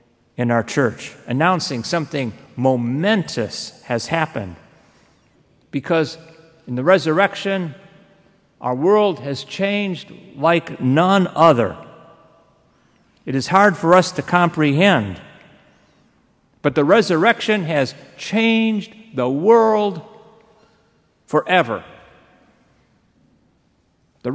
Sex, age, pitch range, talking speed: male, 50-69, 120-185 Hz, 85 wpm